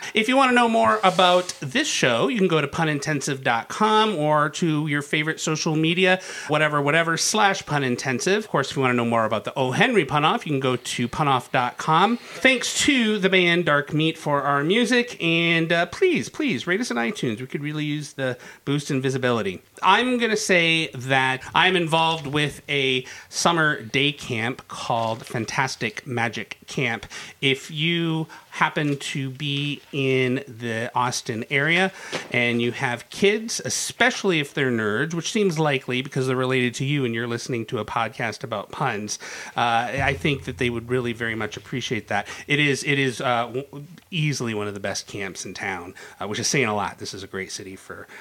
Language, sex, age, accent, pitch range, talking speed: English, male, 30-49, American, 130-180 Hz, 190 wpm